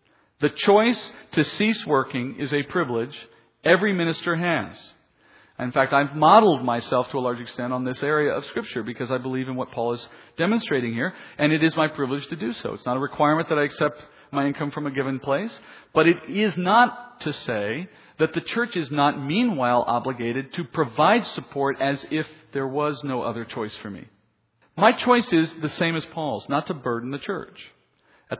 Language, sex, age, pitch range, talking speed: English, male, 50-69, 125-170 Hz, 195 wpm